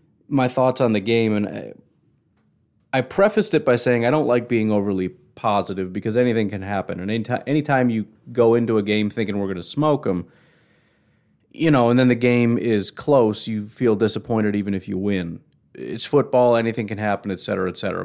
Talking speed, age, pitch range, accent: 200 wpm, 30-49, 105-130 Hz, American